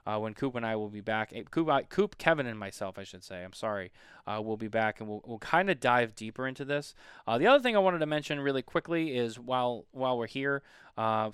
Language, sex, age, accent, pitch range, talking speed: English, male, 20-39, American, 115-150 Hz, 255 wpm